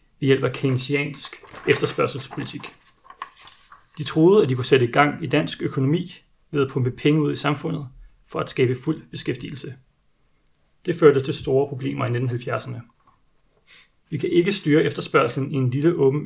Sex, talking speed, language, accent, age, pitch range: male, 160 wpm, Danish, native, 30-49, 125-150 Hz